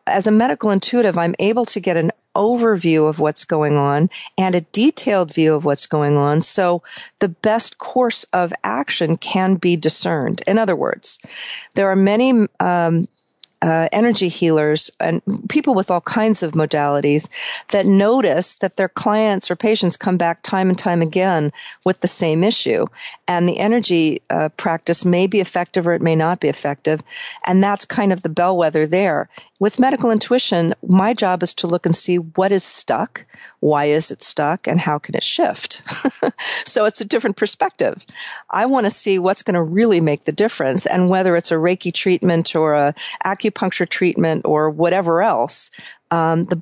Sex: female